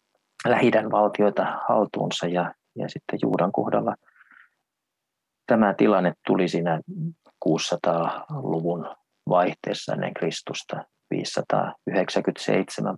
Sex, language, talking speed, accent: male, Finnish, 80 wpm, native